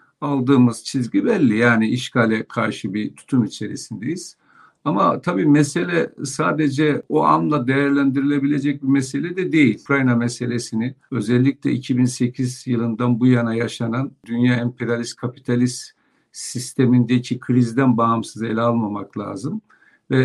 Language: Turkish